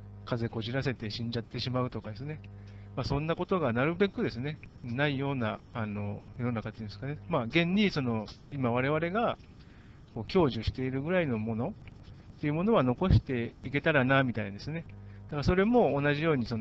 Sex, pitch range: male, 110-145 Hz